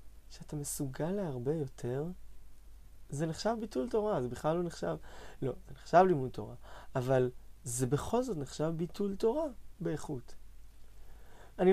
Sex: male